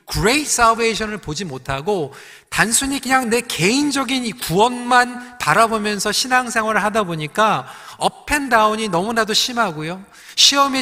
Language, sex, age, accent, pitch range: Korean, male, 40-59, native, 180-245 Hz